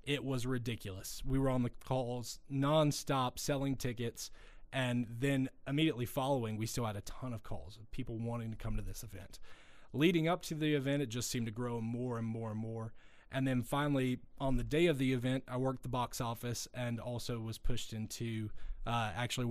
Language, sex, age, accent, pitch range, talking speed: English, male, 20-39, American, 115-135 Hz, 205 wpm